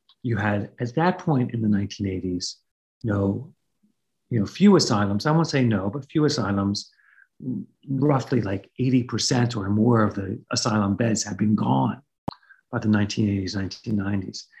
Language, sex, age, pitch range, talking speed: English, male, 50-69, 115-160 Hz, 150 wpm